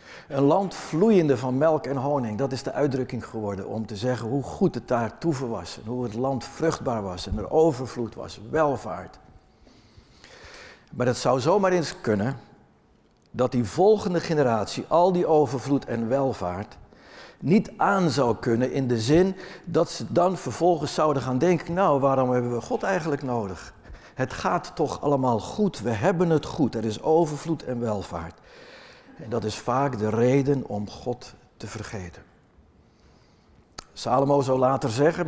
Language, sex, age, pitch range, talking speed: Dutch, male, 60-79, 115-160 Hz, 165 wpm